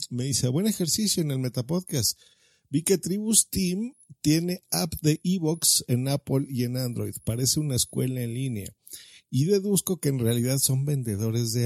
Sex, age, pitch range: male, 50-69, 115-150 Hz